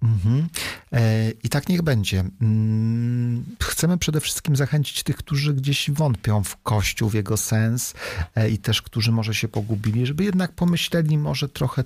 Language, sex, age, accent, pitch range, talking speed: Polish, male, 40-59, native, 105-125 Hz, 140 wpm